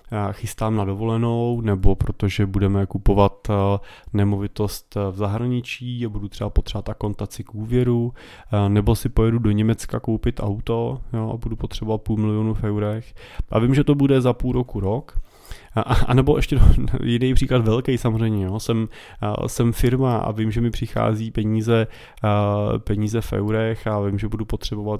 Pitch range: 105-120 Hz